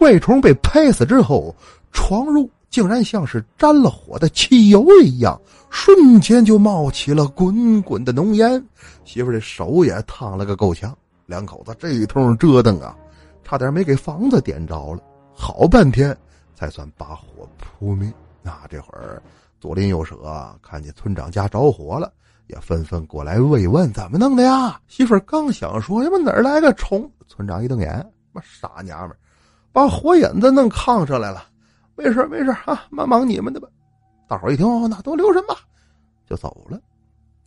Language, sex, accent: Chinese, male, native